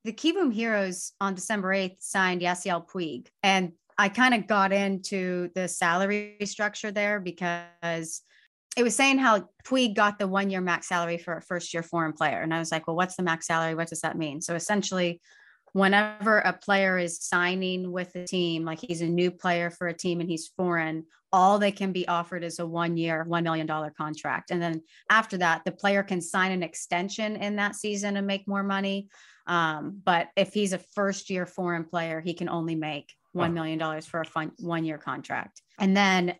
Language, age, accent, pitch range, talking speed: English, 30-49, American, 165-195 Hz, 200 wpm